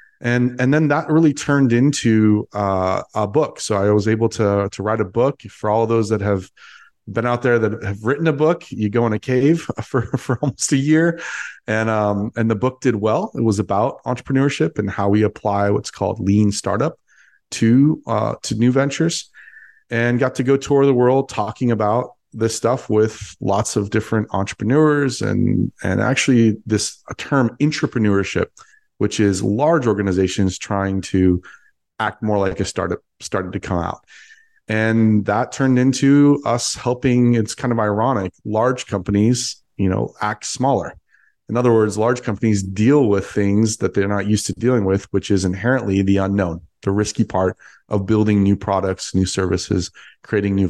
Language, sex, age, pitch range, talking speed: English, male, 30-49, 100-130 Hz, 180 wpm